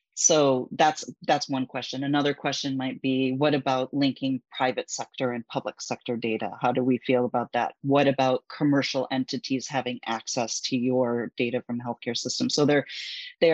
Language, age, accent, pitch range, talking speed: English, 30-49, American, 125-140 Hz, 175 wpm